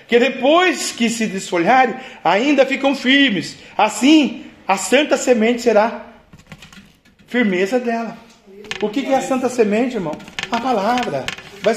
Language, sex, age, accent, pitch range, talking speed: Portuguese, male, 40-59, Brazilian, 210-275 Hz, 135 wpm